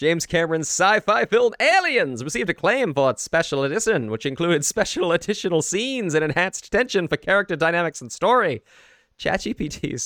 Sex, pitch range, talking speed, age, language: male, 120-165 Hz, 150 wpm, 30-49, English